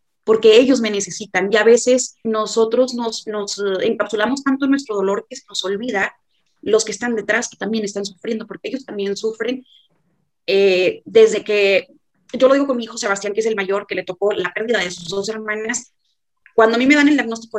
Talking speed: 210 wpm